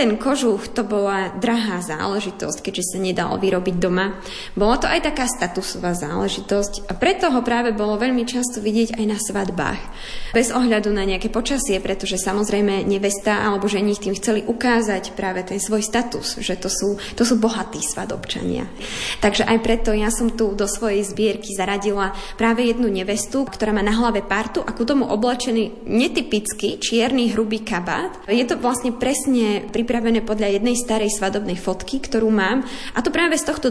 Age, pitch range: 20-39, 200-240 Hz